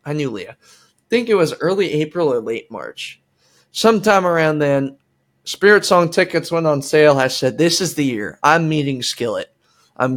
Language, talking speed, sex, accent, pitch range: English, 185 wpm, male, American, 135-175 Hz